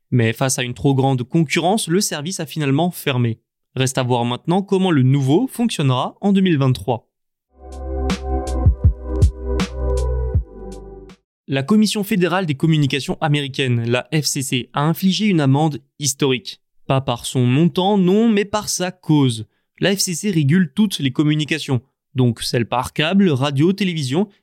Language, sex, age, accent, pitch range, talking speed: French, male, 20-39, French, 130-180 Hz, 140 wpm